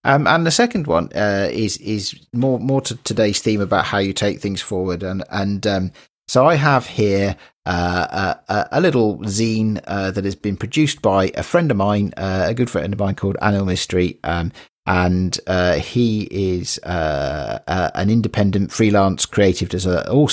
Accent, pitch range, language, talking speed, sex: British, 90-110 Hz, English, 190 wpm, male